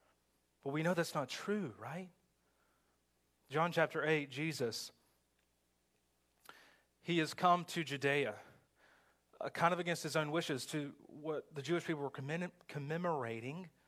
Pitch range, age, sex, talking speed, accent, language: 125-170 Hz, 30-49, male, 135 wpm, American, English